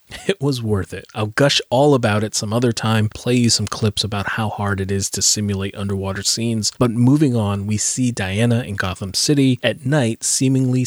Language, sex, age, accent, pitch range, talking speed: English, male, 30-49, American, 100-125 Hz, 205 wpm